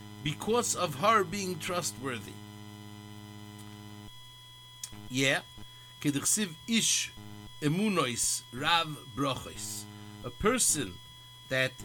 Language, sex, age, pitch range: English, male, 50-69, 105-155 Hz